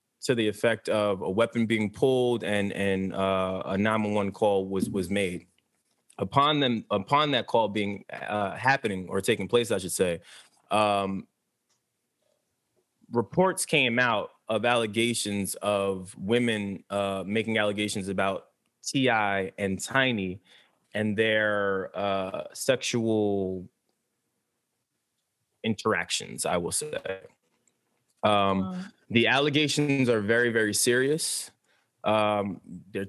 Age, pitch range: 20-39, 100-130 Hz